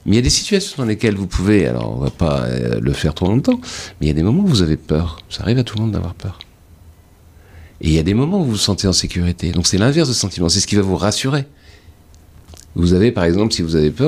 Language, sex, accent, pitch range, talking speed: French, male, French, 85-110 Hz, 295 wpm